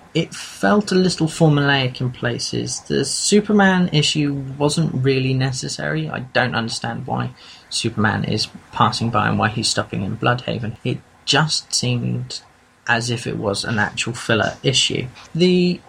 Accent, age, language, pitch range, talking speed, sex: British, 30-49, English, 115-150 Hz, 145 wpm, male